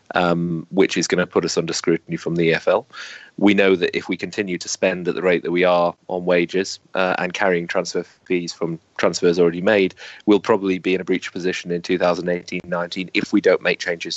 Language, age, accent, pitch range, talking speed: English, 30-49, British, 90-100 Hz, 215 wpm